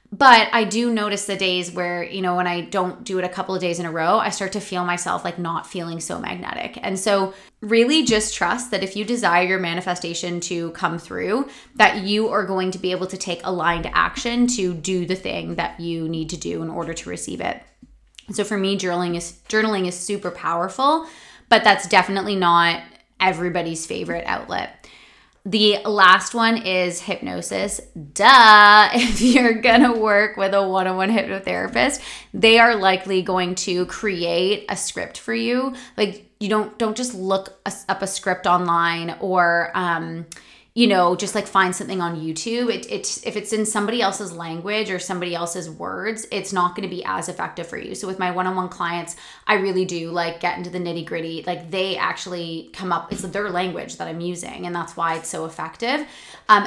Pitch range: 175-210 Hz